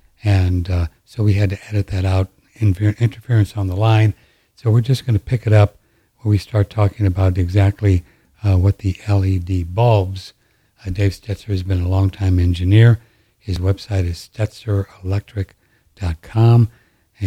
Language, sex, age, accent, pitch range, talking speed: English, male, 60-79, American, 95-115 Hz, 155 wpm